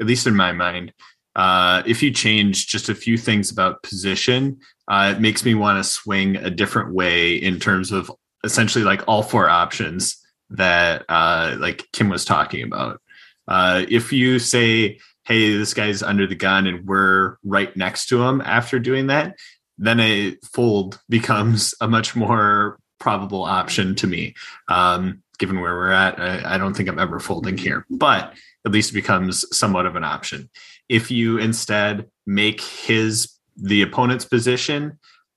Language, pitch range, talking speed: English, 95-115 Hz, 170 wpm